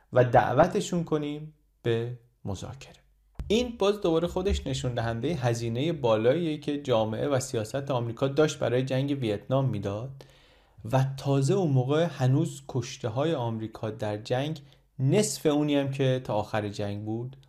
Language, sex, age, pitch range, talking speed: Persian, male, 30-49, 115-145 Hz, 140 wpm